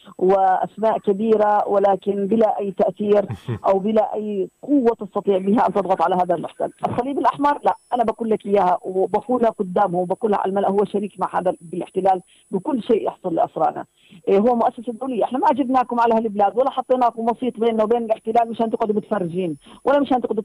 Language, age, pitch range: Arabic, 40-59, 205-250 Hz